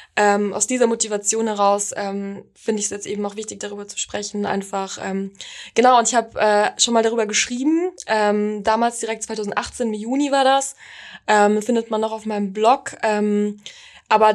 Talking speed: 185 wpm